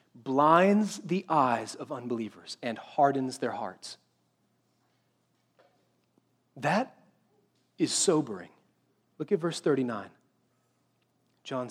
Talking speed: 85 wpm